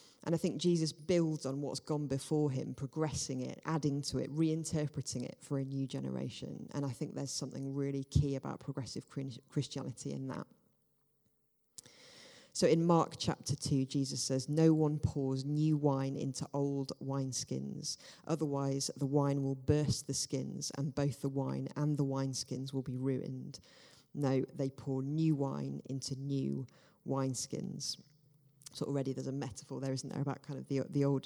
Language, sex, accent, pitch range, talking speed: English, female, British, 135-150 Hz, 170 wpm